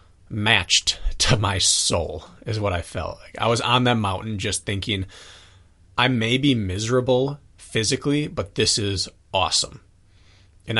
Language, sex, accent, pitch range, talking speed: English, male, American, 90-115 Hz, 145 wpm